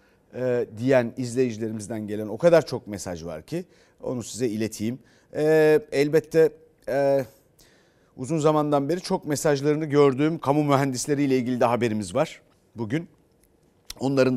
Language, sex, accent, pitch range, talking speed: Turkish, male, native, 120-160 Hz, 125 wpm